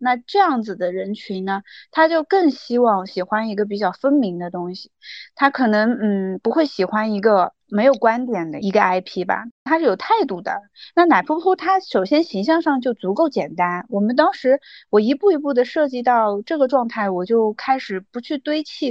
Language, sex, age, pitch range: Chinese, female, 30-49, 195-275 Hz